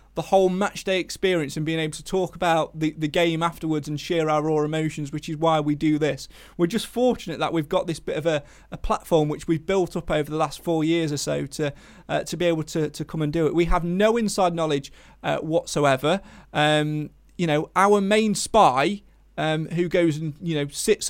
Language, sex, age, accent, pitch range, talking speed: English, male, 30-49, British, 145-175 Hz, 230 wpm